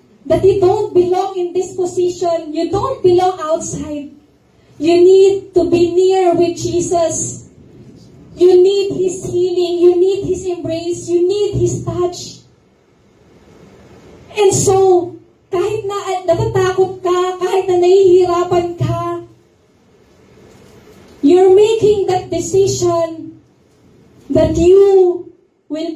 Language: English